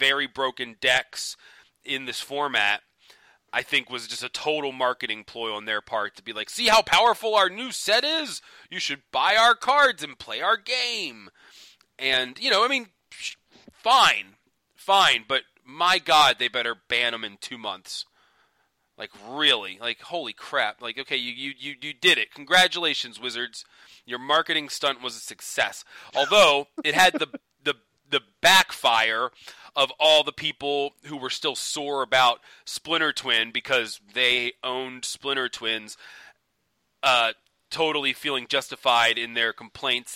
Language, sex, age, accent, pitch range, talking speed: English, male, 30-49, American, 120-145 Hz, 155 wpm